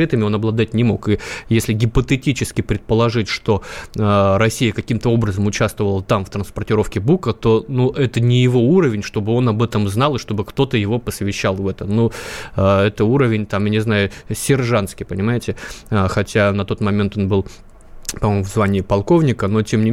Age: 20-39